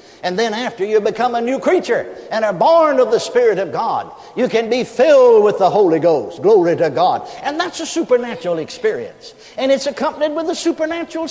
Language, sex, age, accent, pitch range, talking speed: English, male, 60-79, American, 220-295 Hz, 200 wpm